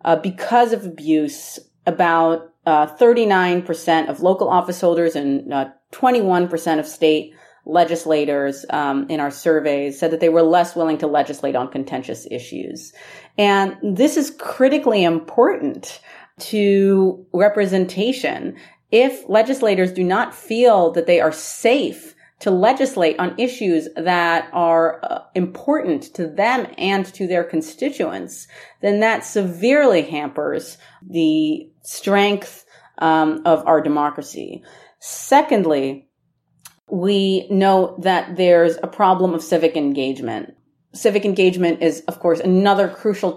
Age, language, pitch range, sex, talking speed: 30-49, English, 160-200 Hz, female, 120 wpm